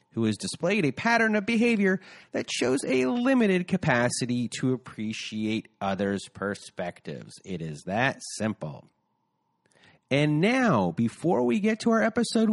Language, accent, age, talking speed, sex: English, American, 30-49, 135 wpm, male